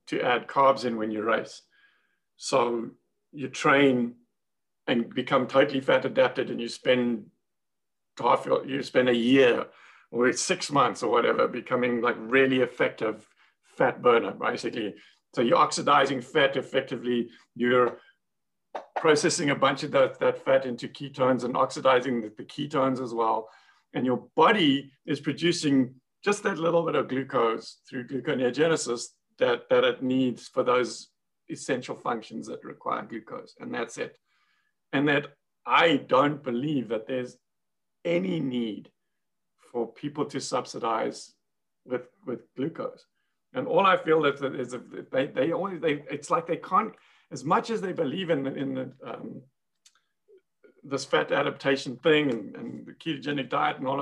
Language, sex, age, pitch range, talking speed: English, male, 50-69, 125-160 Hz, 155 wpm